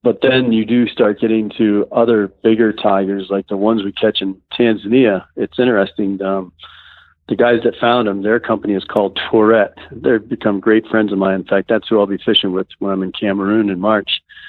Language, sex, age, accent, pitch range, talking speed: English, male, 50-69, American, 95-115 Hz, 205 wpm